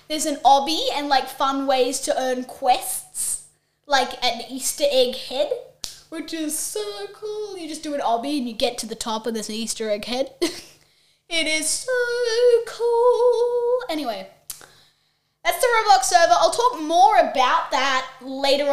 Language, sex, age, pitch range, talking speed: English, female, 10-29, 250-315 Hz, 165 wpm